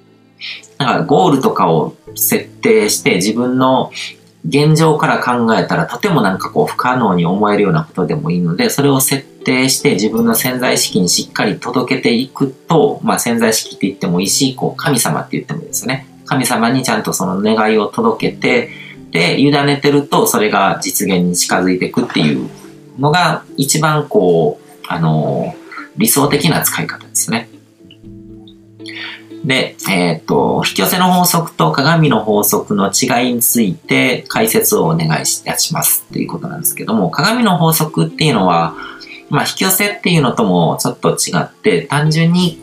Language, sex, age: Japanese, male, 40-59